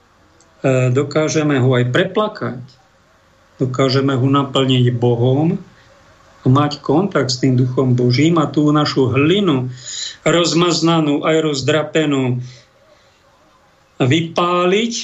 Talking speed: 90 wpm